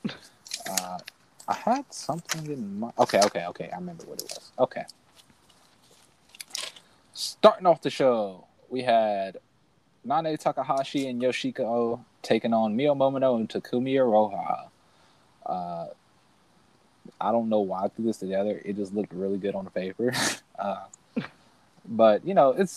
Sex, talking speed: male, 140 wpm